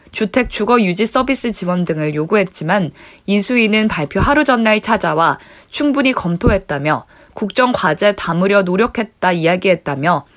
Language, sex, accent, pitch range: Korean, female, native, 175-230 Hz